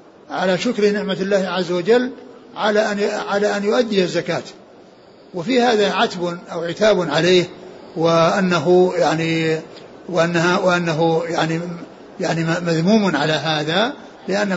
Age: 60-79